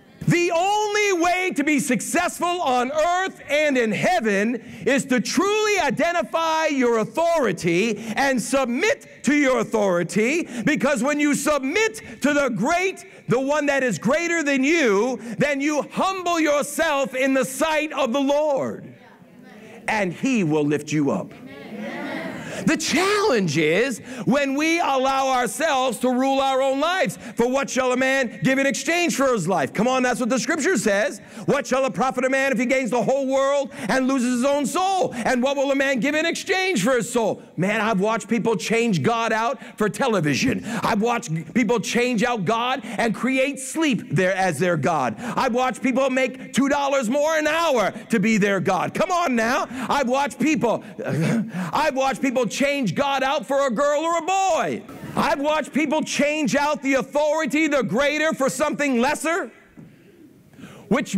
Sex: male